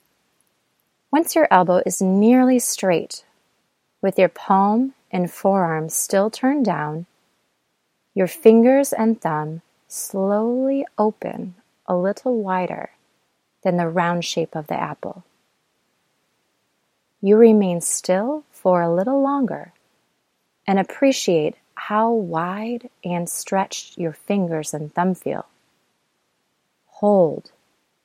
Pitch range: 175-230 Hz